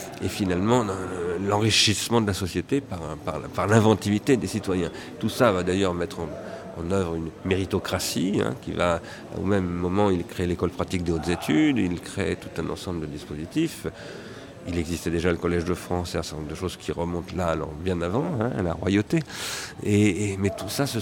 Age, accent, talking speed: 40-59, French, 205 wpm